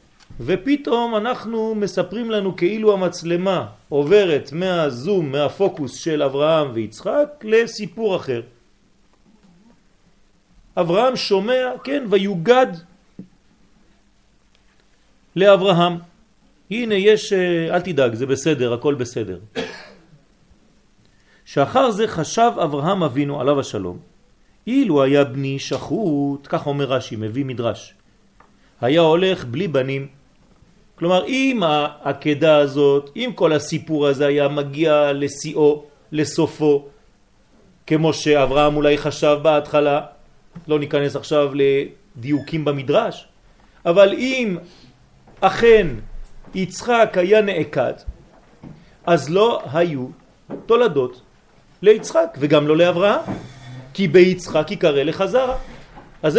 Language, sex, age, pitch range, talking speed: French, male, 40-59, 145-205 Hz, 80 wpm